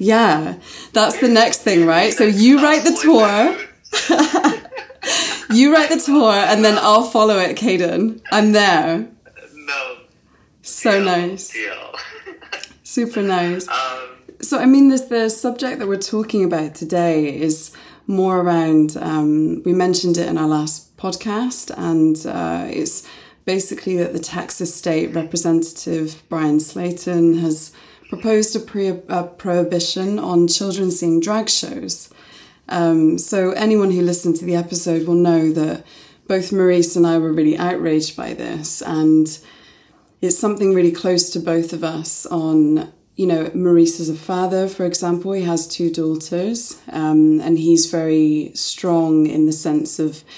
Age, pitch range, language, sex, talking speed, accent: 20-39, 165-195 Hz, English, female, 145 wpm, British